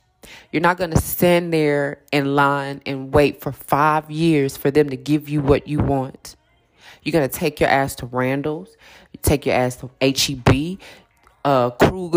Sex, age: female, 20-39